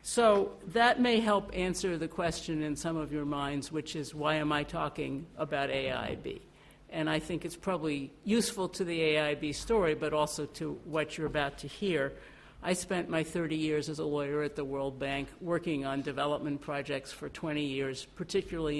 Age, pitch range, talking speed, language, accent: 50-69, 145-170 Hz, 185 wpm, English, American